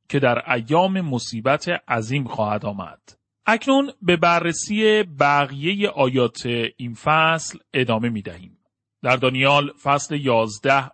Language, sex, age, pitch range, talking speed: Persian, male, 40-59, 135-185 Hz, 115 wpm